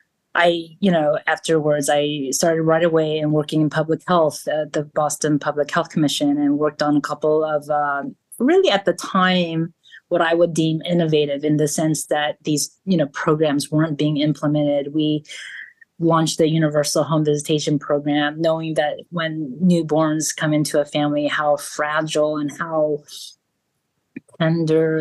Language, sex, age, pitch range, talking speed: English, female, 30-49, 150-165 Hz, 160 wpm